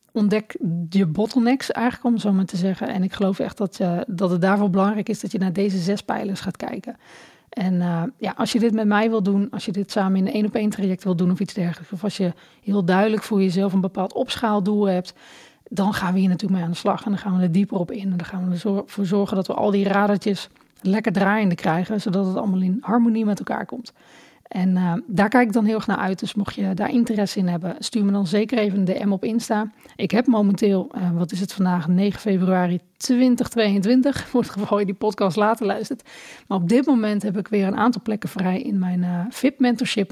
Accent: Dutch